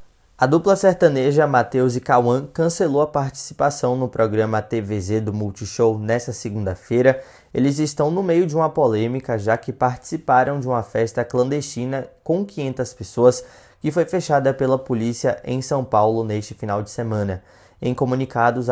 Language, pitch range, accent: Portuguese, 115-155 Hz, Brazilian